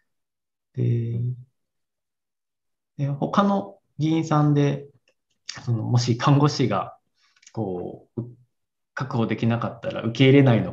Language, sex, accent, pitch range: Japanese, male, native, 110-145 Hz